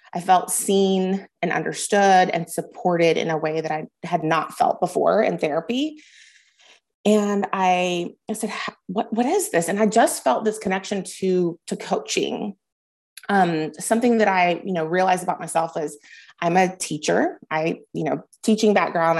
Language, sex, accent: English, female, American